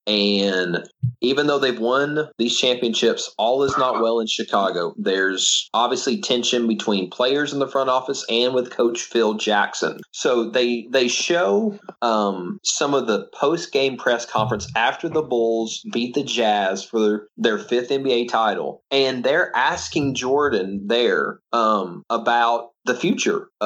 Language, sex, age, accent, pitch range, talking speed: English, male, 30-49, American, 115-140 Hz, 150 wpm